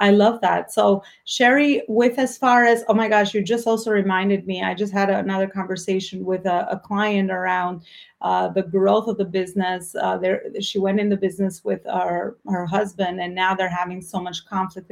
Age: 30-49